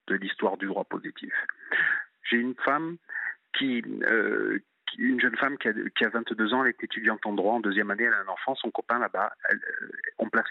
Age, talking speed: 40-59, 225 wpm